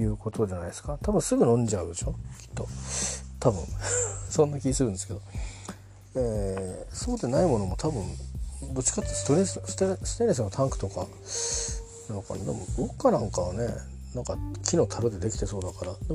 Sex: male